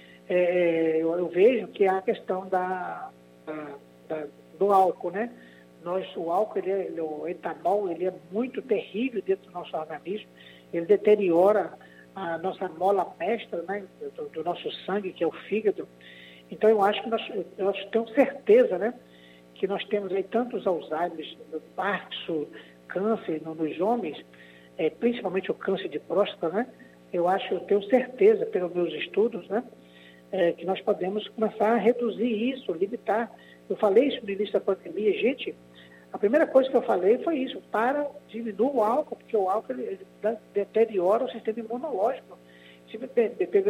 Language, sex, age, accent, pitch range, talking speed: Portuguese, male, 60-79, Brazilian, 170-235 Hz, 160 wpm